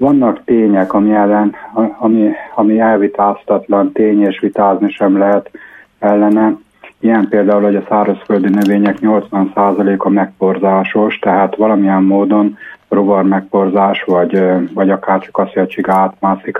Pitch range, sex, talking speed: 100-110 Hz, male, 110 wpm